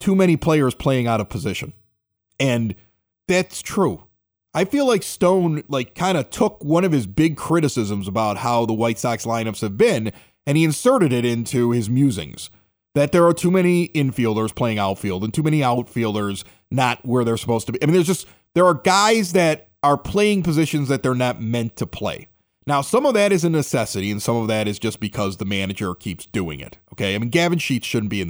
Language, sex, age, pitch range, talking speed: English, male, 30-49, 105-155 Hz, 210 wpm